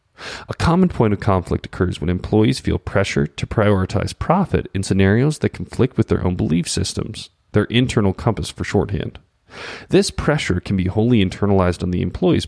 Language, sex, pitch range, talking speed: English, male, 90-115 Hz, 175 wpm